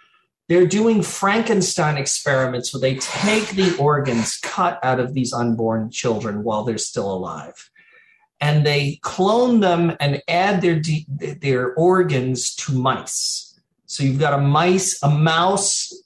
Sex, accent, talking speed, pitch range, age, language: male, American, 140 wpm, 130-185 Hz, 40-59, English